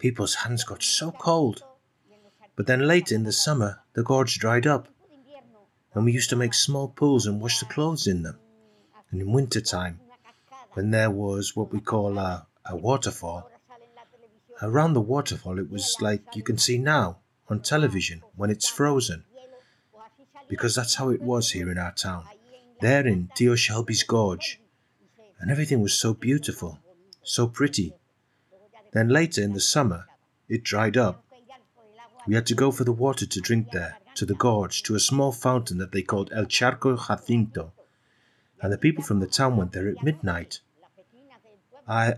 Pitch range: 105-150 Hz